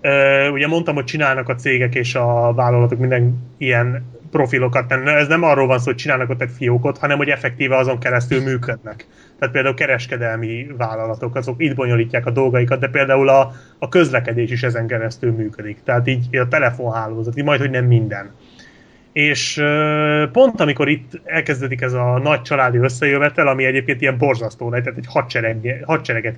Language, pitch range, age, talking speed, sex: Hungarian, 120-145 Hz, 30-49, 165 wpm, male